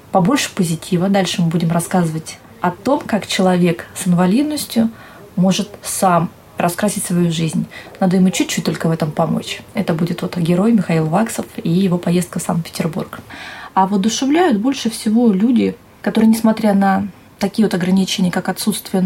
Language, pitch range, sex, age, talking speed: Russian, 180-210 Hz, female, 20-39, 150 wpm